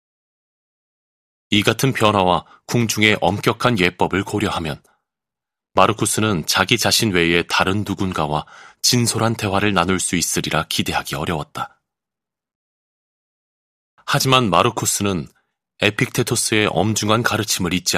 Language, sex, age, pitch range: Korean, male, 30-49, 90-115 Hz